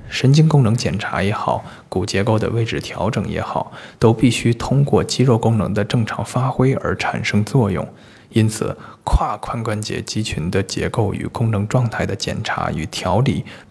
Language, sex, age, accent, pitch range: Chinese, male, 20-39, native, 100-120 Hz